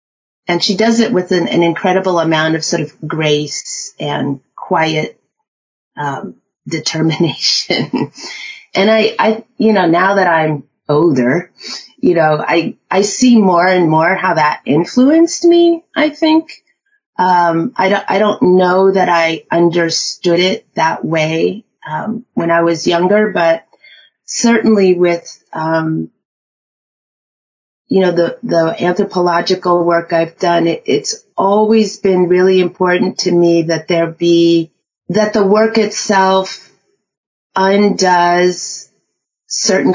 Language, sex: English, female